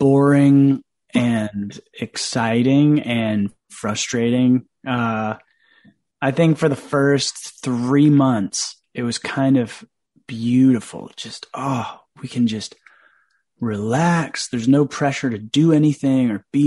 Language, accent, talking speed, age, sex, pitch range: English, American, 115 wpm, 30-49, male, 115-140 Hz